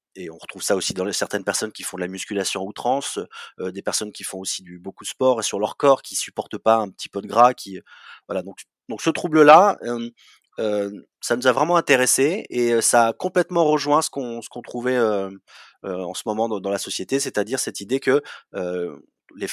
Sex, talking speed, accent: male, 235 wpm, French